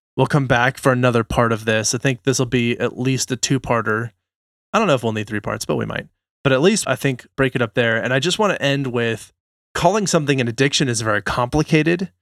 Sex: male